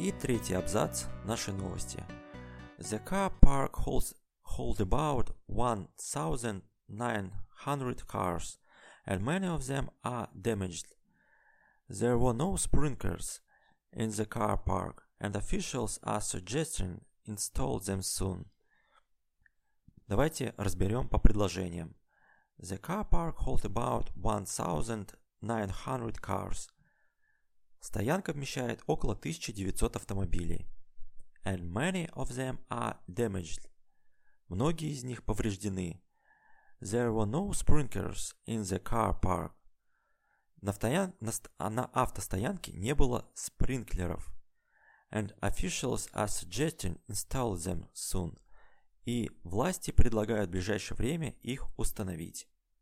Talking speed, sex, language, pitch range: 100 wpm, male, Russian, 95-125 Hz